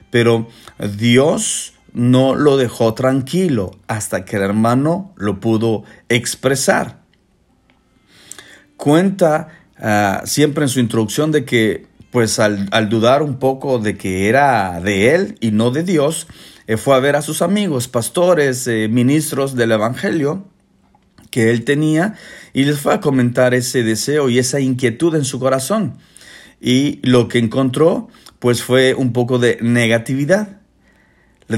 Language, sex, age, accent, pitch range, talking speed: Spanish, male, 50-69, Mexican, 110-145 Hz, 140 wpm